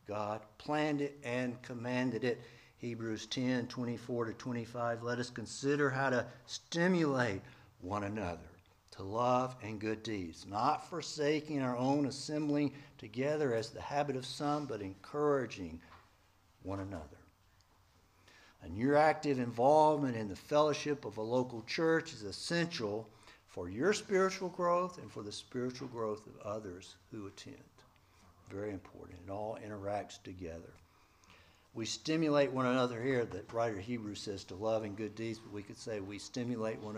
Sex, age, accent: male, 60-79, American